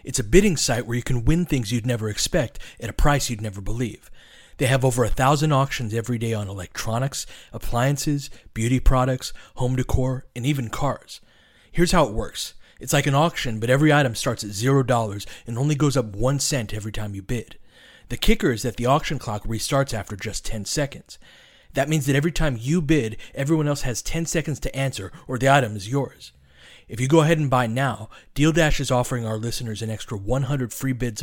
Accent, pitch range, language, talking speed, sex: American, 115-140 Hz, English, 210 wpm, male